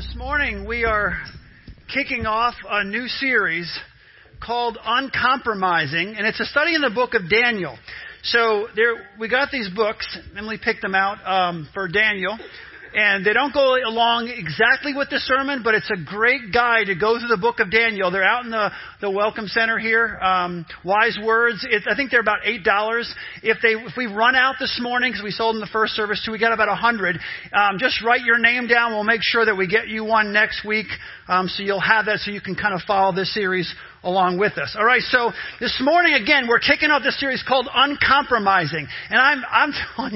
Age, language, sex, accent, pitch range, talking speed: 40-59, English, male, American, 205-245 Hz, 210 wpm